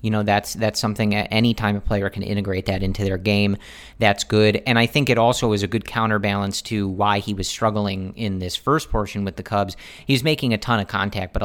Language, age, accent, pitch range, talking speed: English, 40-59, American, 95-110 Hz, 240 wpm